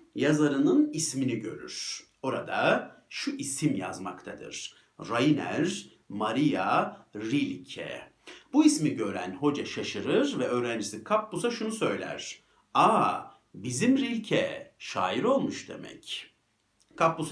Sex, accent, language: male, native, Turkish